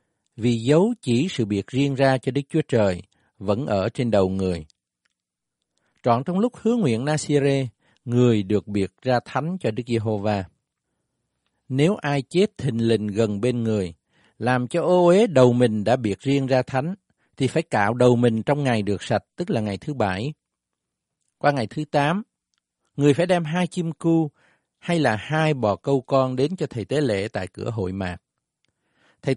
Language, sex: Vietnamese, male